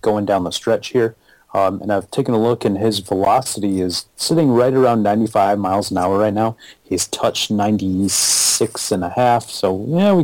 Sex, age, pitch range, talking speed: male, 30-49, 100-120 Hz, 195 wpm